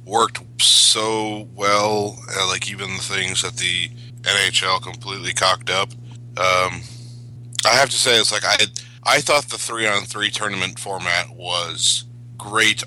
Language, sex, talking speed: English, male, 155 wpm